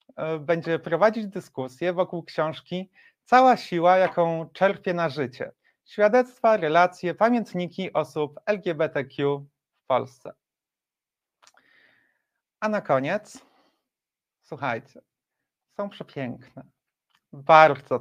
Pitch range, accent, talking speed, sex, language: 155-210 Hz, native, 85 wpm, male, Polish